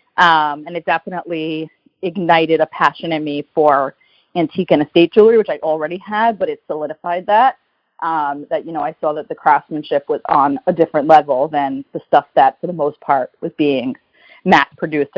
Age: 30-49